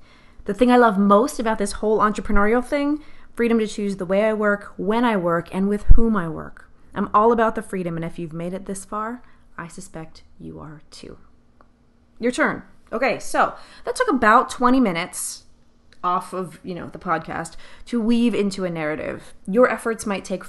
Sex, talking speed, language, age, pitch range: female, 195 wpm, English, 20-39, 175-225 Hz